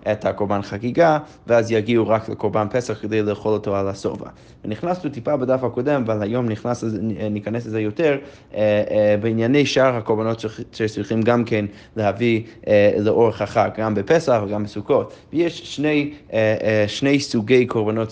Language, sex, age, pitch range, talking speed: Hebrew, male, 20-39, 110-140 Hz, 135 wpm